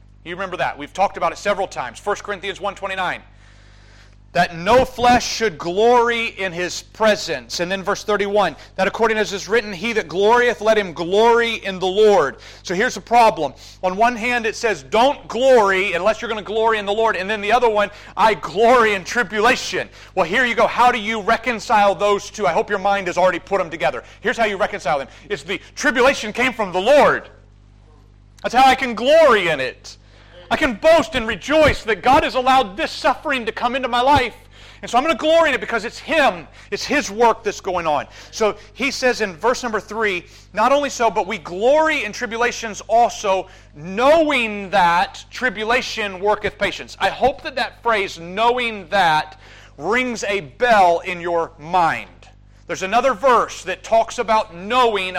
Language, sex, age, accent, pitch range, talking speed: English, male, 40-59, American, 180-235 Hz, 195 wpm